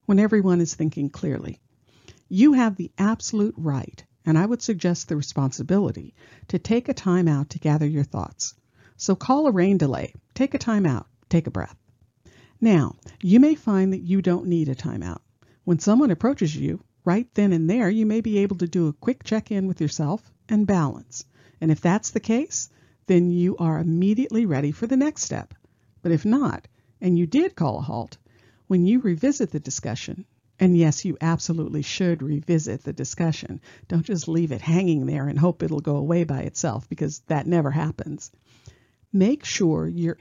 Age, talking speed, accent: 50-69, 190 wpm, American